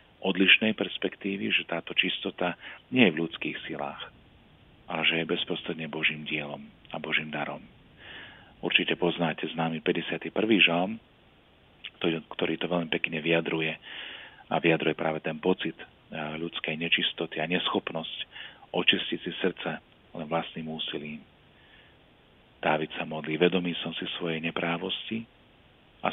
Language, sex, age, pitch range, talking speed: Slovak, male, 40-59, 80-90 Hz, 125 wpm